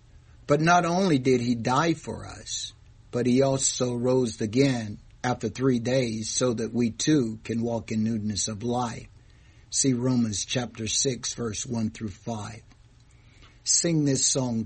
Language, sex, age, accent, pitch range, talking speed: English, male, 60-79, American, 115-150 Hz, 150 wpm